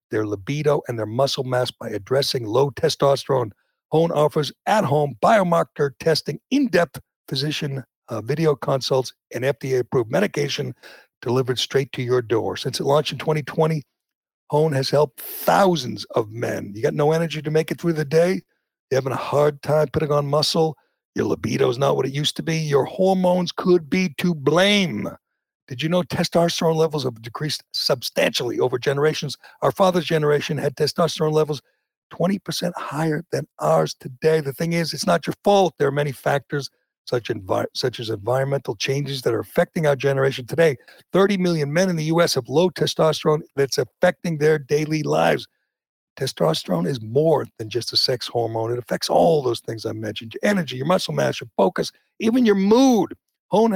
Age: 60-79